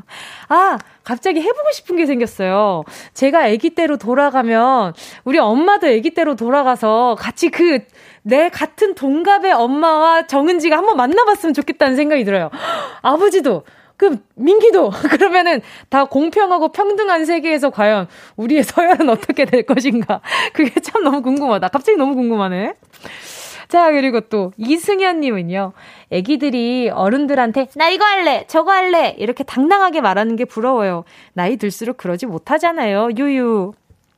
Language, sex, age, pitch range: Korean, female, 20-39, 225-335 Hz